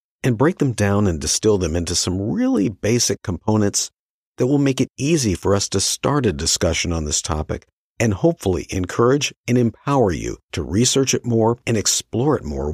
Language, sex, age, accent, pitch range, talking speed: English, male, 50-69, American, 90-120 Hz, 190 wpm